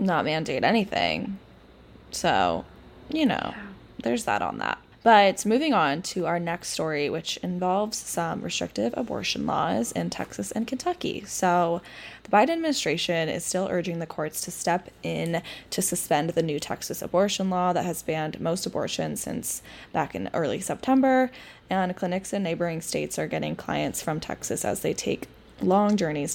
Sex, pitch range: female, 165-210 Hz